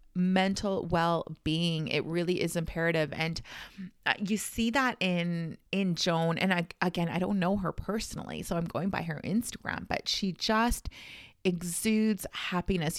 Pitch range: 170-210 Hz